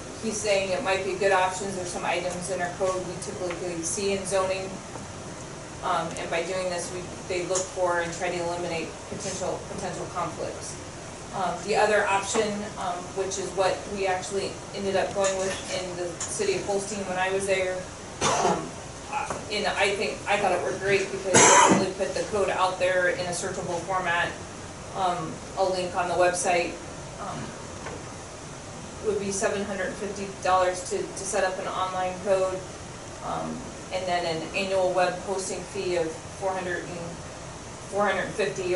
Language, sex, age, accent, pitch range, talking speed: English, female, 20-39, American, 175-195 Hz, 160 wpm